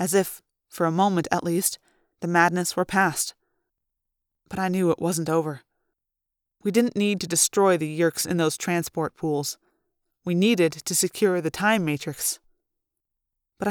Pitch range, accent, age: 170-220 Hz, American, 20-39